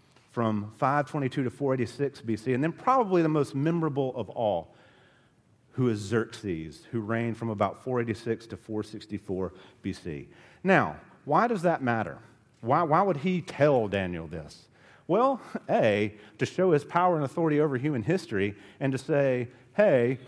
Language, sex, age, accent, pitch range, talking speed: English, male, 40-59, American, 115-160 Hz, 150 wpm